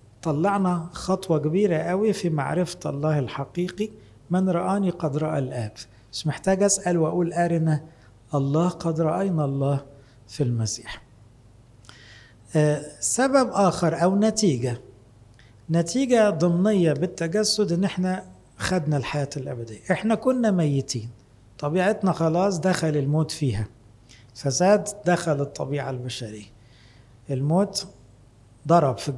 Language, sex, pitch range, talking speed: English, male, 120-175 Hz, 100 wpm